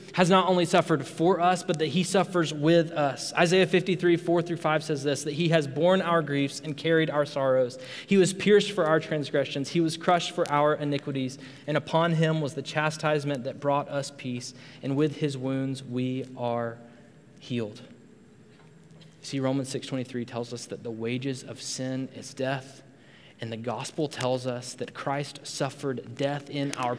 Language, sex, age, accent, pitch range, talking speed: English, male, 20-39, American, 125-155 Hz, 185 wpm